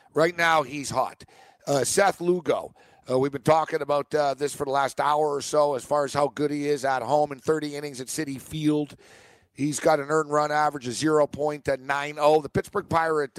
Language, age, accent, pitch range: English, 50-69, American, 135-160 Hz